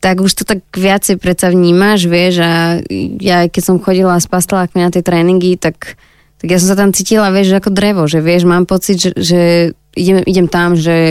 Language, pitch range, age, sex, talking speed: Slovak, 170-185 Hz, 20-39, female, 205 wpm